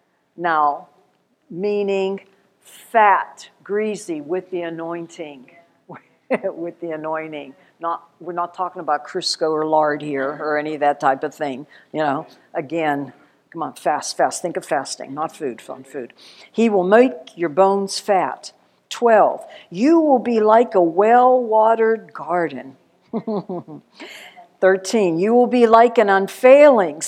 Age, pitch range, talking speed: 60-79, 160-255 Hz, 135 wpm